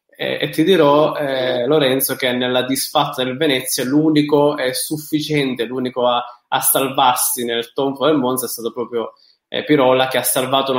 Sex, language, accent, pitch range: male, English, Italian, 125-150 Hz